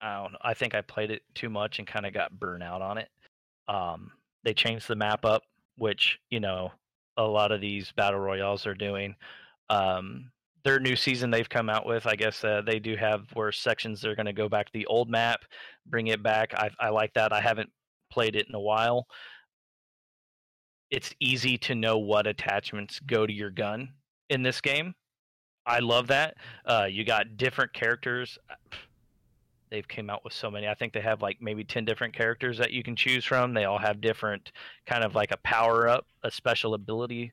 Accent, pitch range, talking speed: American, 105-120 Hz, 205 wpm